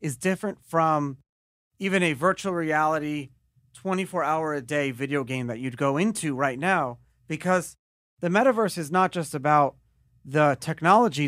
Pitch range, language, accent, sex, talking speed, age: 140-175 Hz, English, American, male, 135 wpm, 30-49